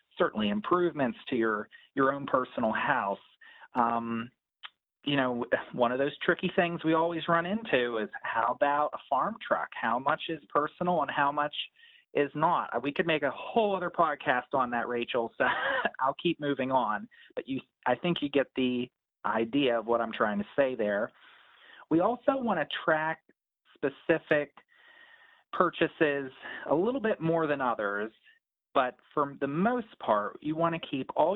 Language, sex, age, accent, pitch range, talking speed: English, male, 30-49, American, 120-165 Hz, 165 wpm